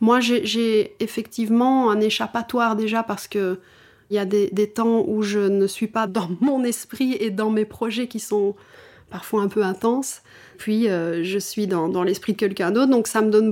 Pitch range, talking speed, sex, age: 200-235 Hz, 205 wpm, female, 30-49